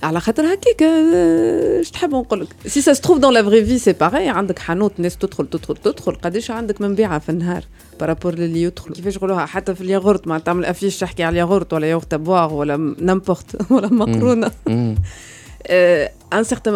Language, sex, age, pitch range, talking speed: Arabic, female, 30-49, 165-220 Hz, 105 wpm